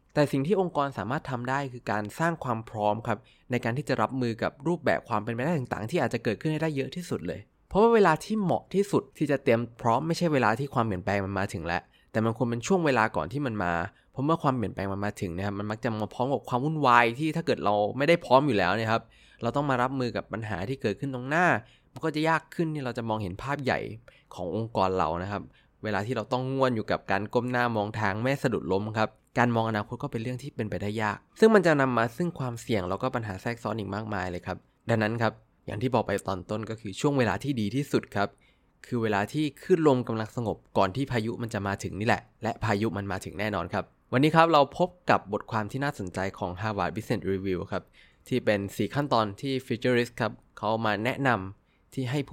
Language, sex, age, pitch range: Thai, male, 20-39, 105-135 Hz